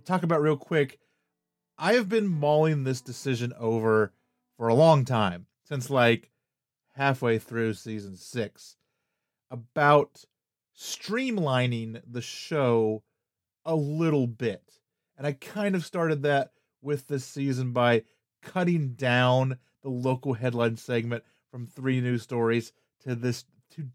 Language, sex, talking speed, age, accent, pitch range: English, male, 130 wpm, 30-49, American, 115-150 Hz